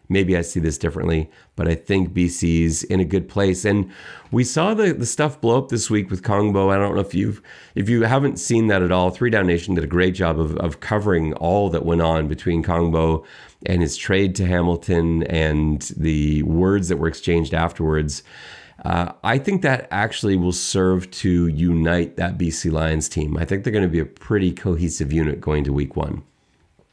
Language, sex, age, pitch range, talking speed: English, male, 40-59, 85-105 Hz, 205 wpm